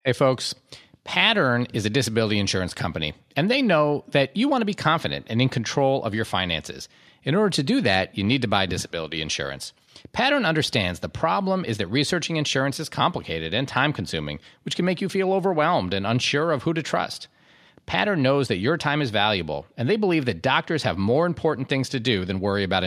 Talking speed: 205 wpm